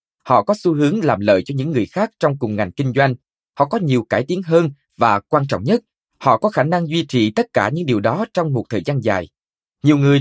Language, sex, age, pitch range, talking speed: Vietnamese, male, 20-39, 125-175 Hz, 255 wpm